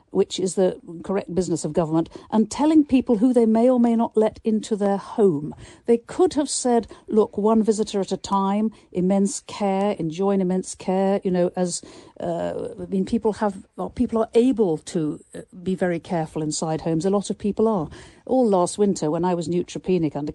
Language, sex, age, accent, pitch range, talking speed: English, female, 50-69, British, 175-225 Hz, 185 wpm